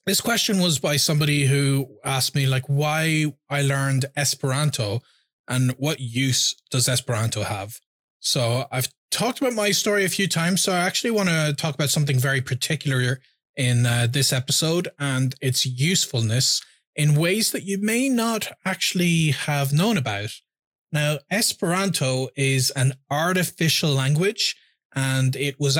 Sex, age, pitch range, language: male, 20-39, 130-155 Hz, English